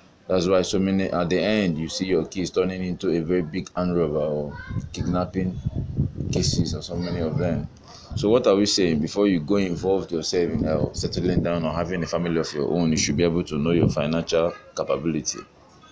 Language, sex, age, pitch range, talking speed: English, male, 20-39, 80-95 Hz, 210 wpm